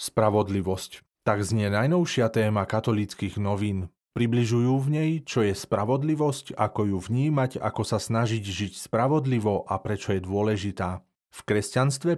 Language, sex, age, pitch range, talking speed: Slovak, male, 30-49, 100-130 Hz, 135 wpm